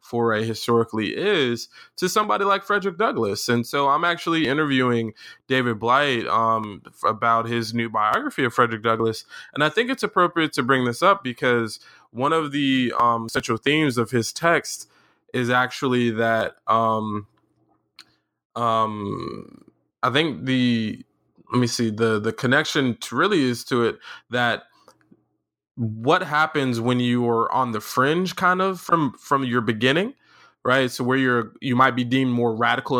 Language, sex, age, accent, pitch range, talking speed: English, male, 20-39, American, 115-145 Hz, 155 wpm